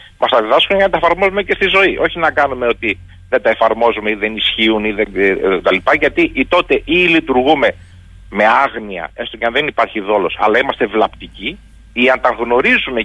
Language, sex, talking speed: Greek, male, 200 wpm